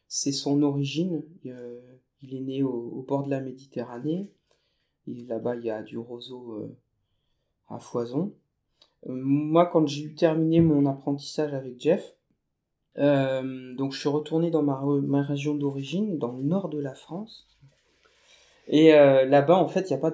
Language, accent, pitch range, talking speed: French, French, 130-155 Hz, 175 wpm